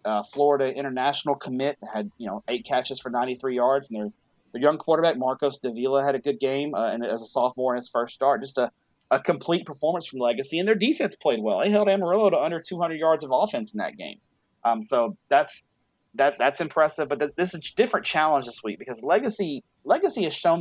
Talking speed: 220 wpm